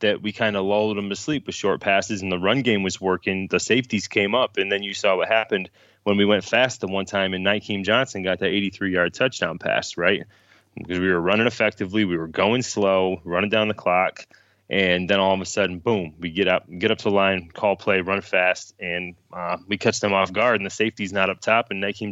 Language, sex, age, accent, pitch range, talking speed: English, male, 20-39, American, 90-105 Hz, 245 wpm